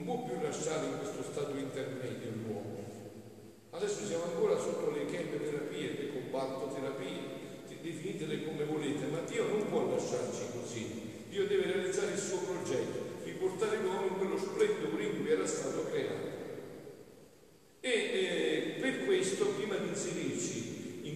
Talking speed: 140 wpm